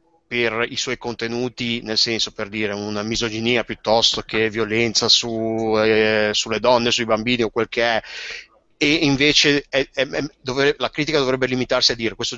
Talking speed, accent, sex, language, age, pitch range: 175 wpm, native, male, Italian, 30-49, 115-150 Hz